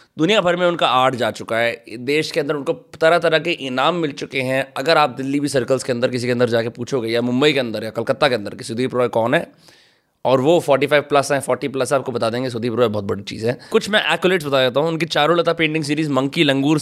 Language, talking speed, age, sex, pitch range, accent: Hindi, 260 wpm, 20-39, male, 135-165 Hz, native